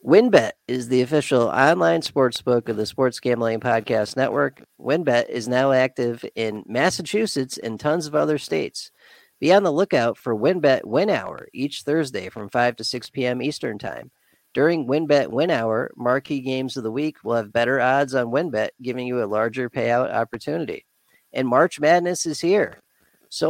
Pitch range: 115-145 Hz